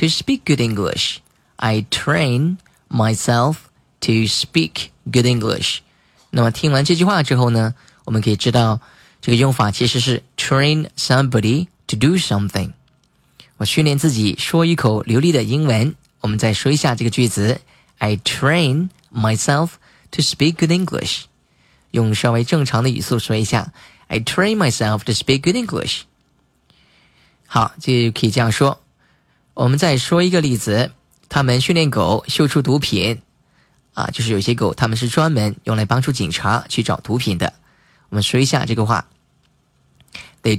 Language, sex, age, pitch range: Chinese, male, 20-39, 110-150 Hz